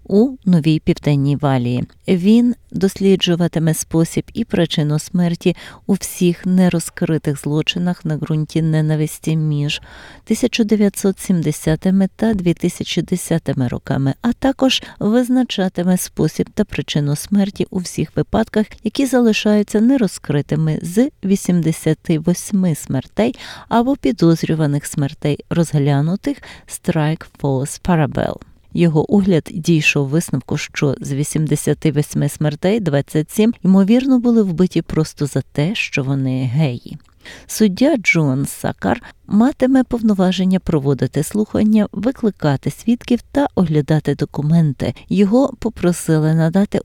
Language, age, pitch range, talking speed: Ukrainian, 30-49, 150-210 Hz, 100 wpm